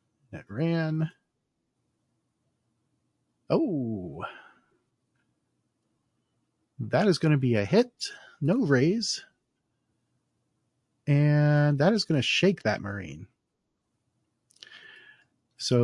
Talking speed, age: 80 wpm, 40-59